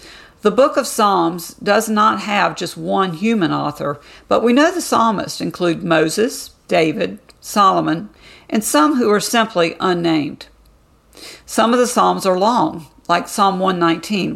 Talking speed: 145 wpm